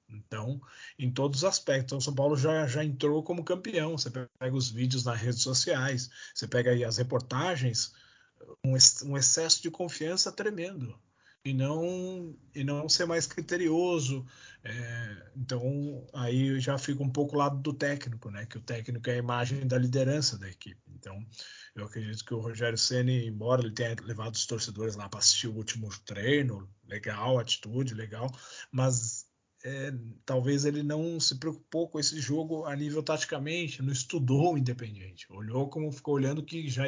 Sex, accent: male, Brazilian